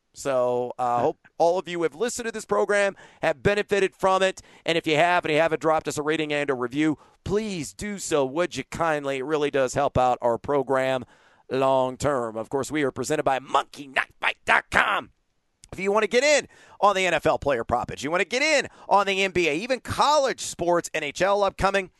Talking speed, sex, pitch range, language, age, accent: 205 wpm, male, 145-200 Hz, English, 40-59, American